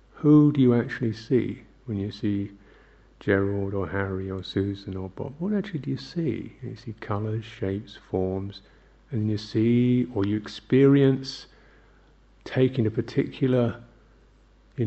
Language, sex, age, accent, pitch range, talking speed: English, male, 50-69, British, 105-125 Hz, 140 wpm